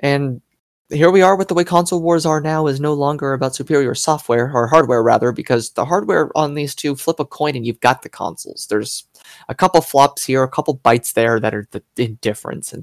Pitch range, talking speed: 120-160 Hz, 220 wpm